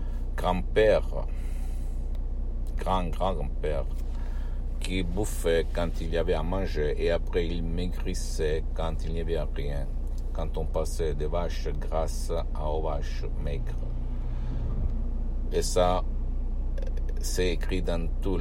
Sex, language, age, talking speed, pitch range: male, Italian, 60-79, 115 wpm, 75-90 Hz